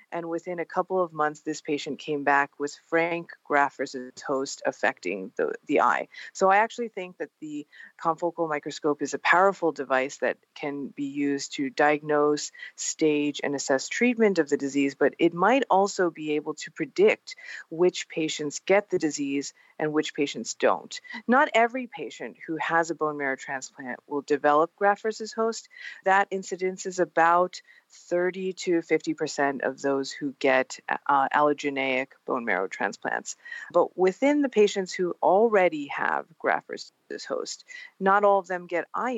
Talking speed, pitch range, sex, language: 160 wpm, 145-195 Hz, female, English